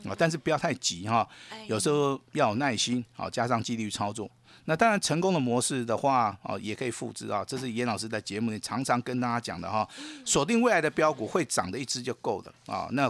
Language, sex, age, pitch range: Chinese, male, 50-69, 110-165 Hz